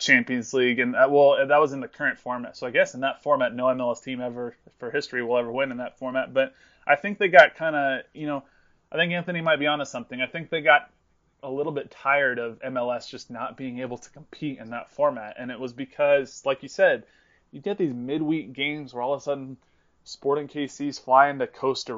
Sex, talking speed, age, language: male, 235 wpm, 20-39, English